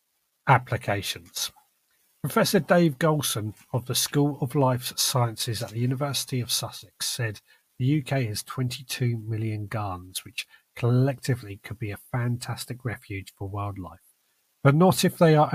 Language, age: English, 40-59